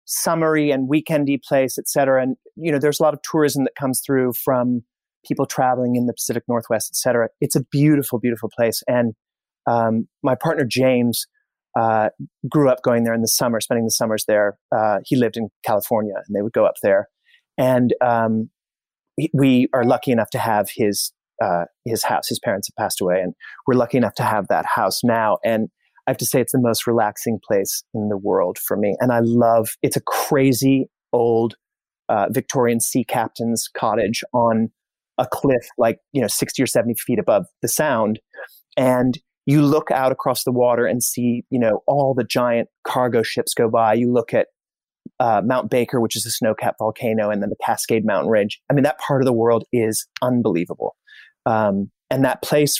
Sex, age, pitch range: male, 30-49, 115-135 Hz